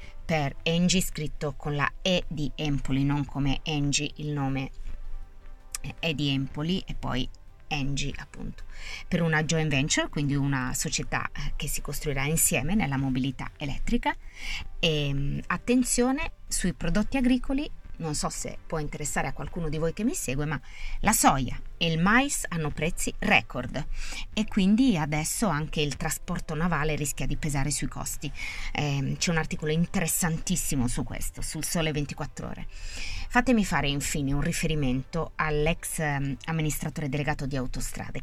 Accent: native